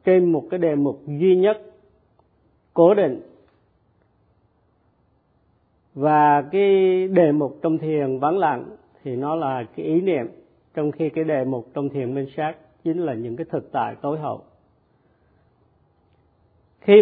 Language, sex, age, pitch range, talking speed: Vietnamese, male, 50-69, 130-170 Hz, 145 wpm